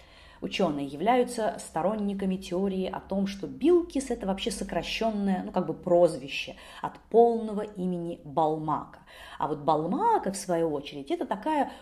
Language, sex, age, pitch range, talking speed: Russian, female, 30-49, 165-240 Hz, 125 wpm